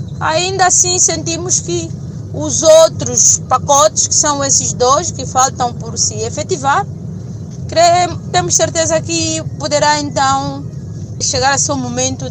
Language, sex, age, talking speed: Portuguese, female, 20-39, 125 wpm